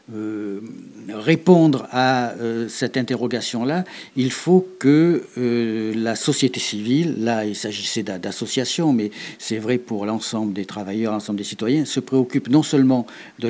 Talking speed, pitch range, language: 130 wpm, 110-135 Hz, French